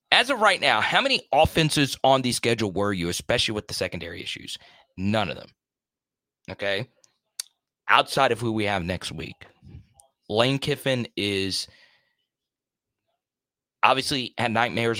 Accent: American